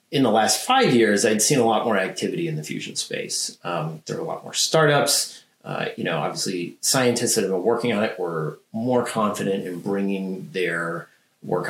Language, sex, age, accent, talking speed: English, male, 30-49, American, 205 wpm